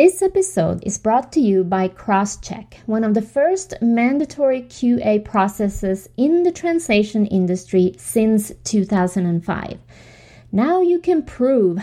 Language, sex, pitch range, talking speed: English, female, 190-265 Hz, 125 wpm